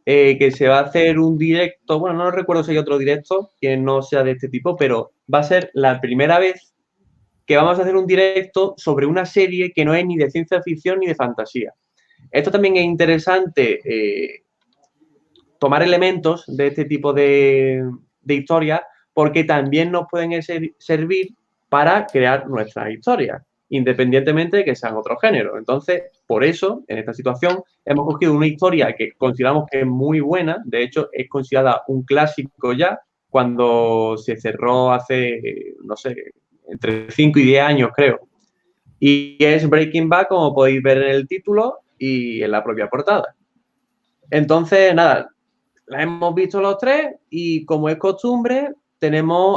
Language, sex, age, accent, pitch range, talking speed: Spanish, male, 20-39, Spanish, 135-185 Hz, 165 wpm